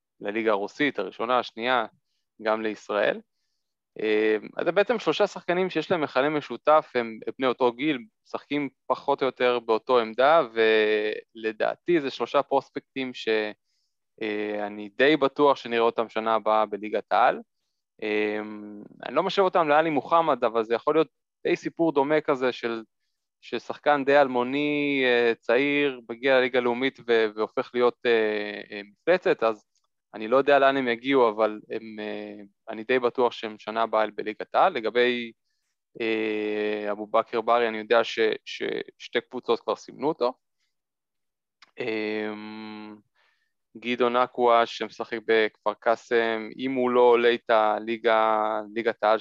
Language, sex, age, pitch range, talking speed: Hebrew, male, 20-39, 110-135 Hz, 105 wpm